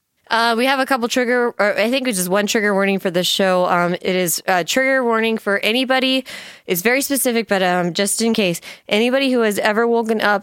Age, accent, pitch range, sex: 20-39, American, 160-225 Hz, female